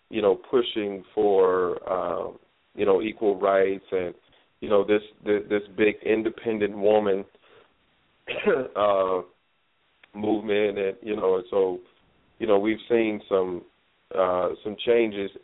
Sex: male